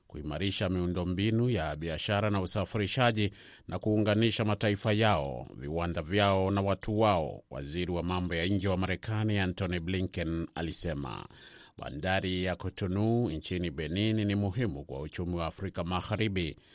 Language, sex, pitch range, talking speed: Swahili, male, 90-105 Hz, 135 wpm